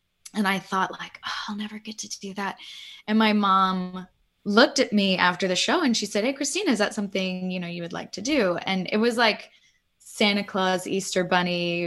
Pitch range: 175-215 Hz